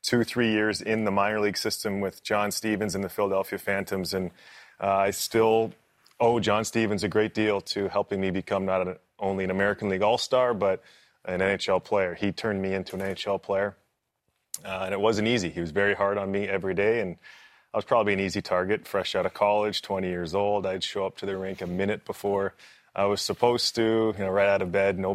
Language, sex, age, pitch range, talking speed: English, male, 30-49, 95-110 Hz, 225 wpm